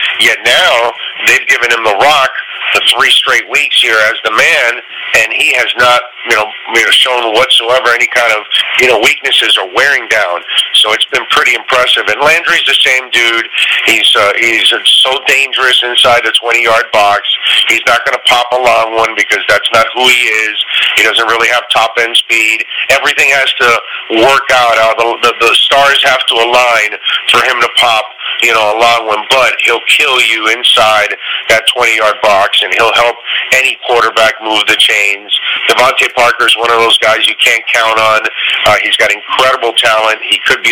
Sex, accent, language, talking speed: male, American, English, 195 wpm